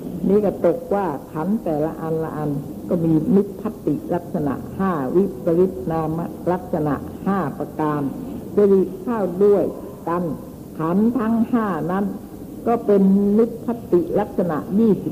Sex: female